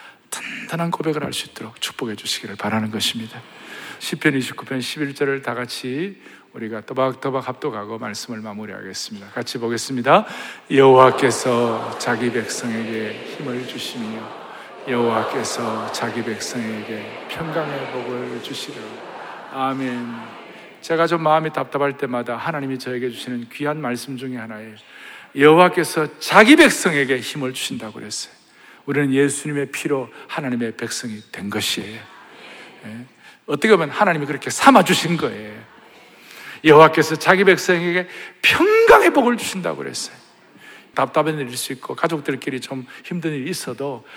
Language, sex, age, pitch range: Korean, male, 40-59, 120-155 Hz